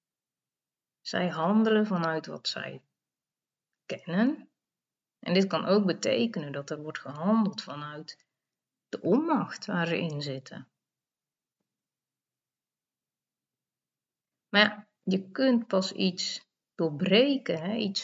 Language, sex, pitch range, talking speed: Dutch, female, 160-210 Hz, 95 wpm